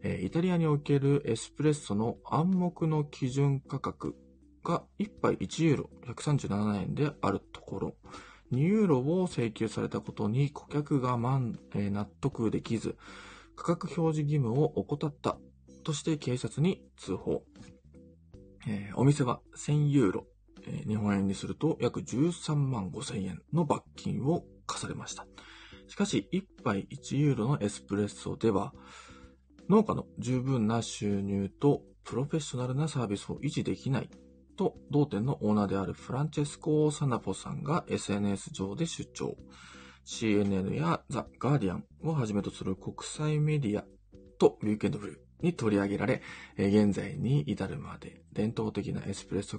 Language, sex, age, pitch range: Japanese, male, 20-39, 100-145 Hz